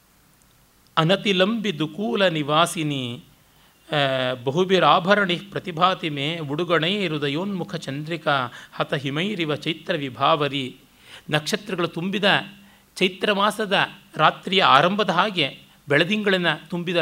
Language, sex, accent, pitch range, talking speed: Kannada, male, native, 145-185 Hz, 80 wpm